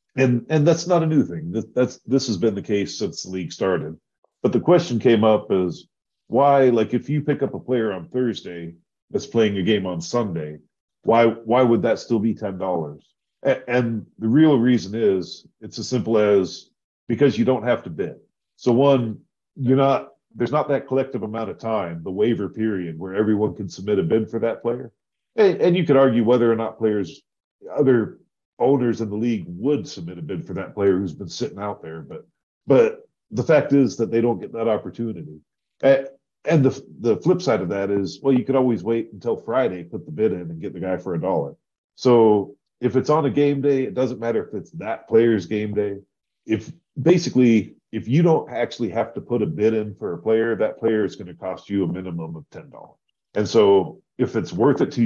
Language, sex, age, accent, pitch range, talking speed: English, male, 40-59, American, 105-135 Hz, 215 wpm